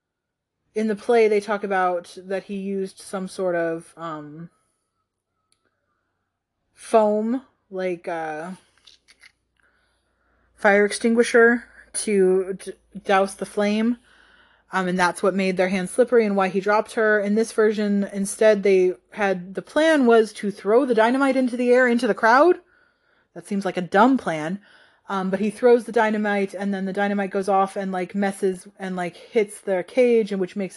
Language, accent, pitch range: English, American, 190-230 Hz